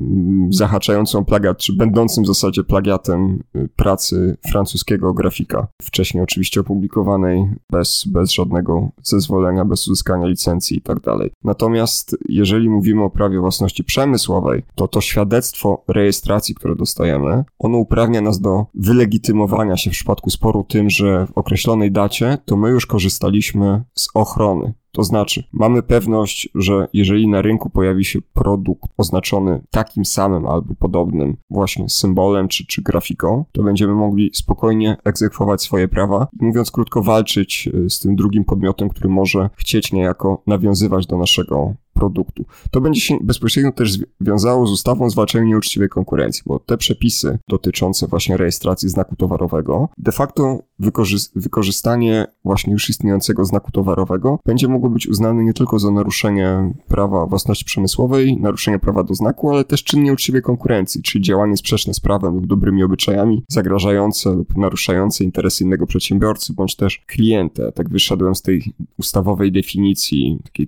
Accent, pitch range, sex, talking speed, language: native, 95-110 Hz, male, 145 wpm, Polish